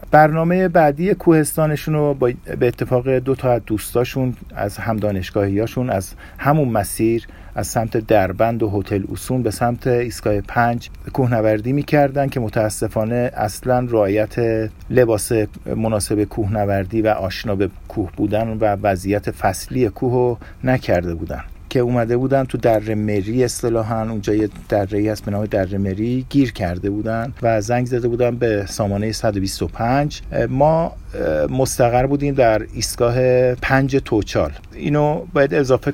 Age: 50-69